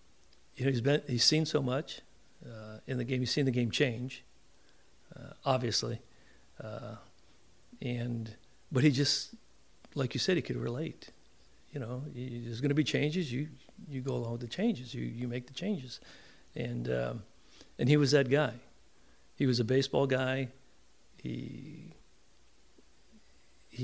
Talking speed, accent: 160 wpm, American